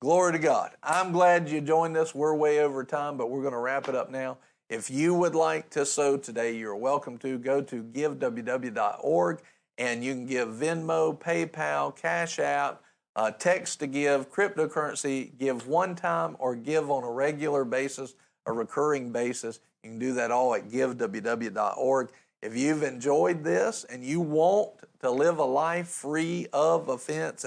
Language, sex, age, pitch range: English, male, 50-69, 125-160 Hz